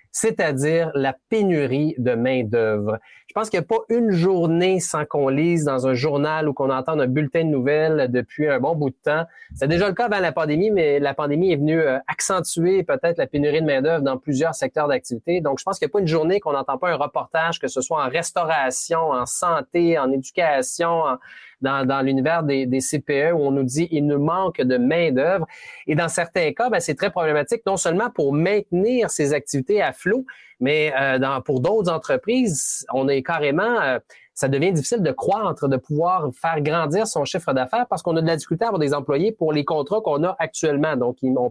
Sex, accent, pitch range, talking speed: male, Canadian, 145-185 Hz, 215 wpm